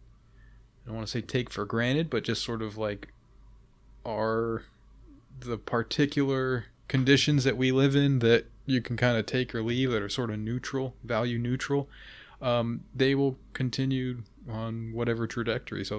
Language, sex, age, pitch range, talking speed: English, male, 20-39, 110-125 Hz, 160 wpm